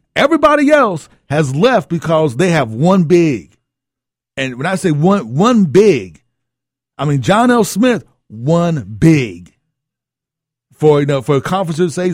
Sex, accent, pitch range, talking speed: male, American, 130-195 Hz, 150 wpm